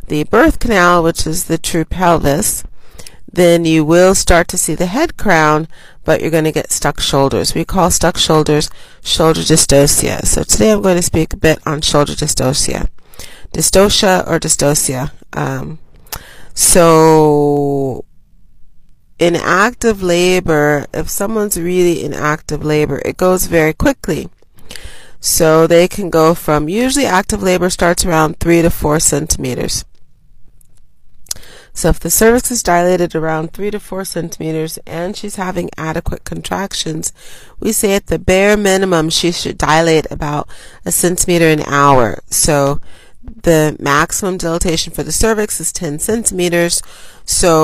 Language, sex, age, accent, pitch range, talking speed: English, female, 30-49, American, 155-185 Hz, 145 wpm